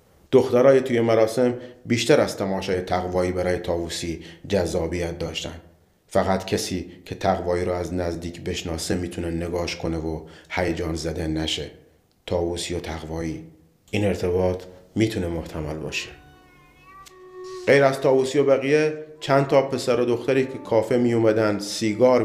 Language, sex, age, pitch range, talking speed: Persian, male, 30-49, 85-105 Hz, 130 wpm